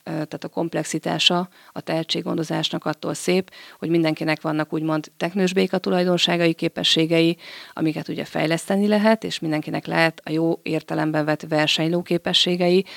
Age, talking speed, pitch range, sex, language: 30-49, 125 wpm, 155-180 Hz, female, Hungarian